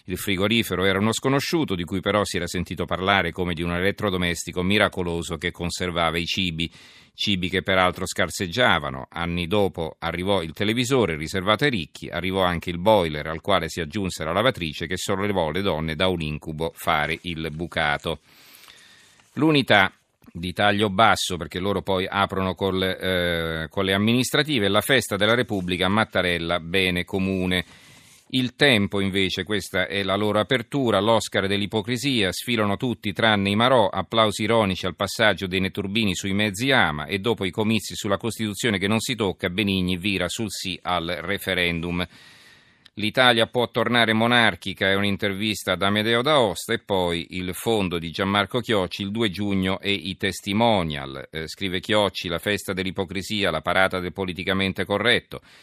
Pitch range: 90-105 Hz